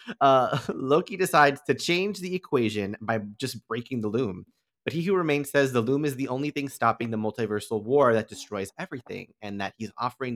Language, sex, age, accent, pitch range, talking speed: English, male, 30-49, American, 105-135 Hz, 195 wpm